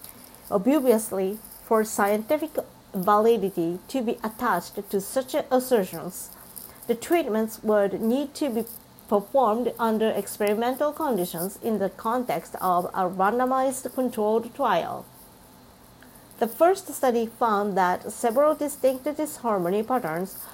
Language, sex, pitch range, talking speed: English, female, 195-255 Hz, 110 wpm